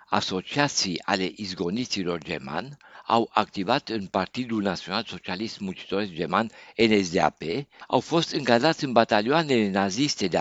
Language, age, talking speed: Romanian, 60-79, 115 wpm